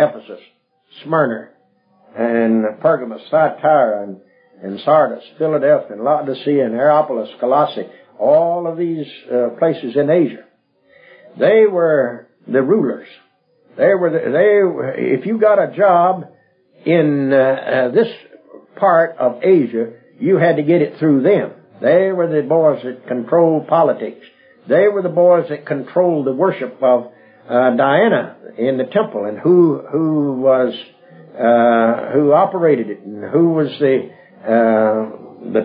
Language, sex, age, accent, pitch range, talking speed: English, male, 60-79, American, 115-165 Hz, 140 wpm